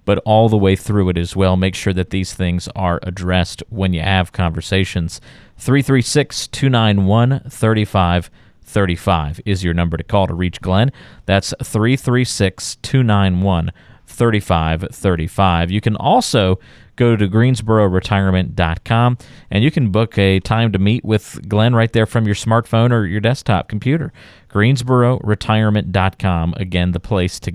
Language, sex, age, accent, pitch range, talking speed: English, male, 40-59, American, 90-120 Hz, 130 wpm